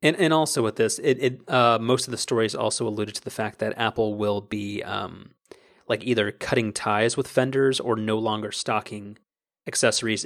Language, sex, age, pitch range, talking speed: English, male, 30-49, 105-125 Hz, 195 wpm